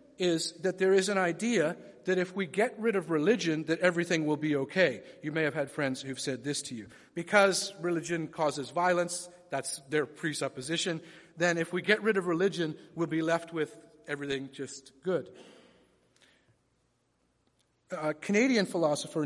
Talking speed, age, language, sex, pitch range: 160 wpm, 40-59, English, male, 145-190 Hz